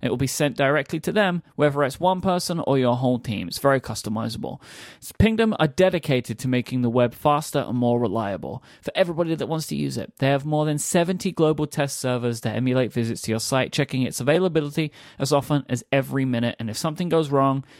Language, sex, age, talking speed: English, male, 30-49, 210 wpm